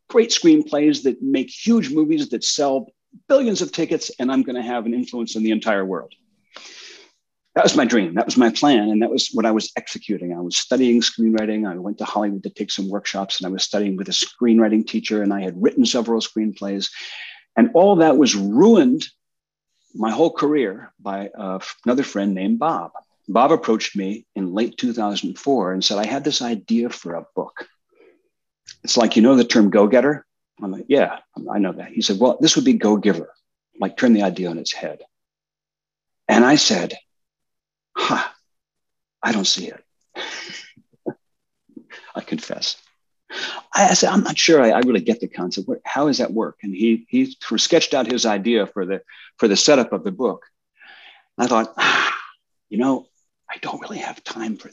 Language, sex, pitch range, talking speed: English, male, 100-140 Hz, 185 wpm